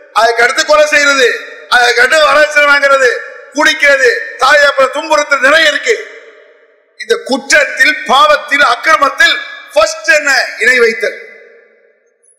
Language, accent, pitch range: English, Indian, 270-325 Hz